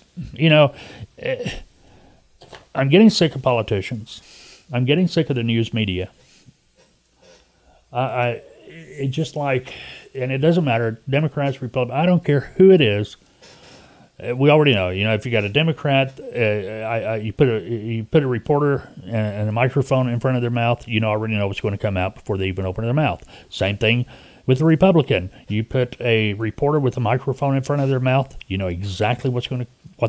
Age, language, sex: 40-59, English, male